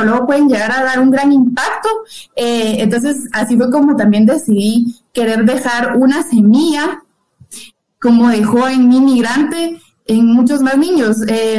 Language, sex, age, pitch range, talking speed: Spanish, female, 20-39, 225-275 Hz, 150 wpm